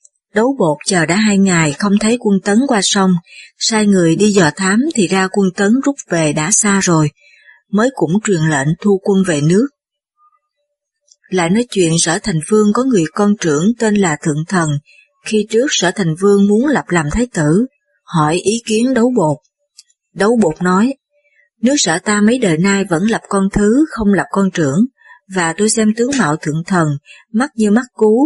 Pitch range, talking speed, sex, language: 175-230 Hz, 195 wpm, female, Vietnamese